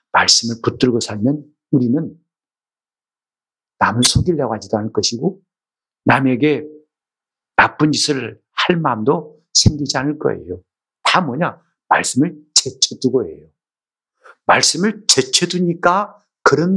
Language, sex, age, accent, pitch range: Korean, male, 50-69, native, 135-200 Hz